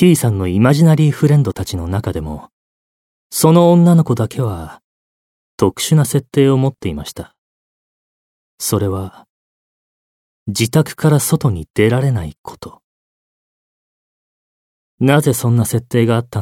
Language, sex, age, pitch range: Japanese, male, 30-49, 90-145 Hz